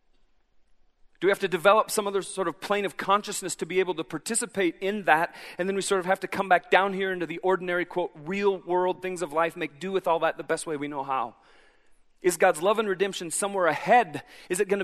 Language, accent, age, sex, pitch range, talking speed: English, American, 40-59, male, 155-190 Hz, 245 wpm